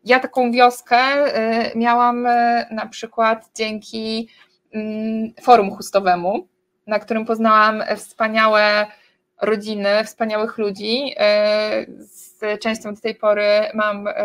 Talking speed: 95 wpm